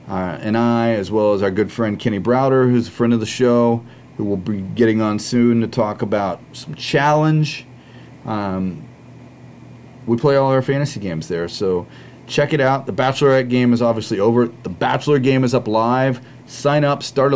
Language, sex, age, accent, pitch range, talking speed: English, male, 30-49, American, 115-130 Hz, 190 wpm